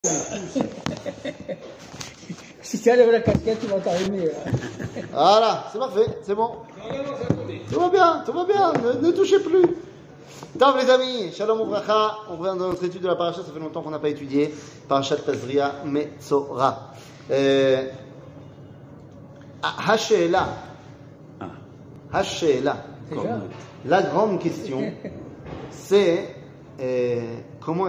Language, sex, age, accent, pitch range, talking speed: French, male, 30-49, French, 140-180 Hz, 120 wpm